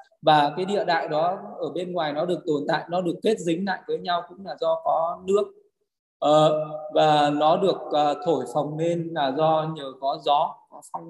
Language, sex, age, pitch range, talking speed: Vietnamese, male, 20-39, 145-185 Hz, 195 wpm